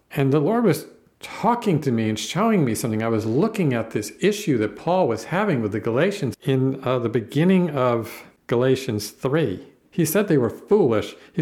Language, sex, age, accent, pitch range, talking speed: English, male, 50-69, American, 125-165 Hz, 195 wpm